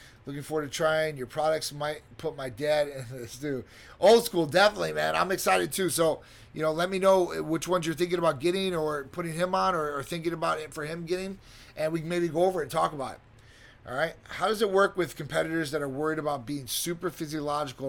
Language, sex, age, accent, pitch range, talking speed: English, male, 30-49, American, 130-165 Hz, 235 wpm